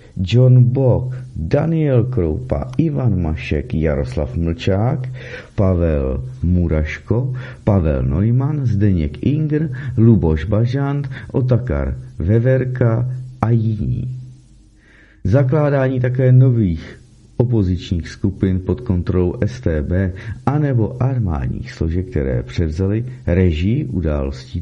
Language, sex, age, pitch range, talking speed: Czech, male, 50-69, 90-125 Hz, 85 wpm